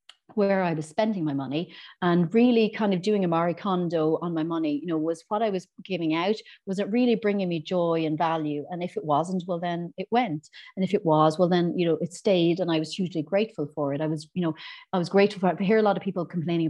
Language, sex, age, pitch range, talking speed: English, female, 40-59, 155-185 Hz, 260 wpm